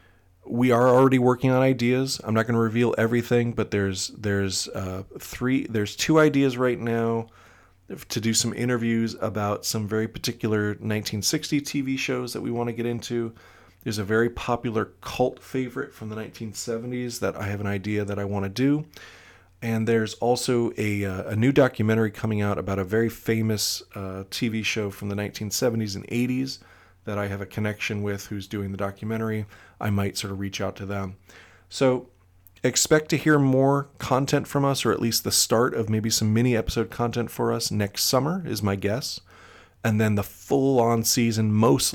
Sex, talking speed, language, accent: male, 185 wpm, English, American